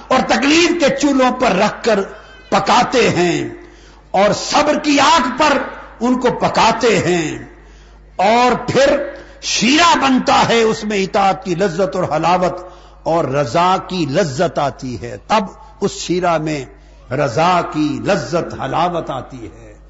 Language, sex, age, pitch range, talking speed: Urdu, male, 60-79, 185-290 Hz, 135 wpm